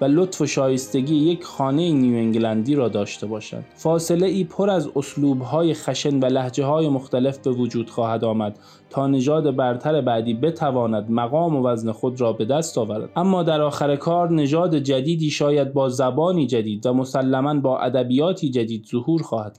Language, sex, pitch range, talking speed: Persian, male, 120-155 Hz, 170 wpm